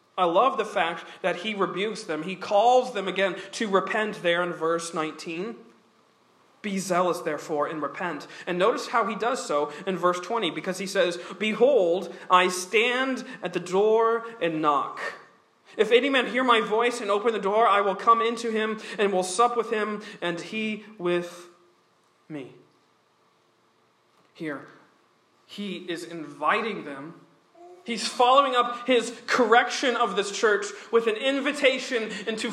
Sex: male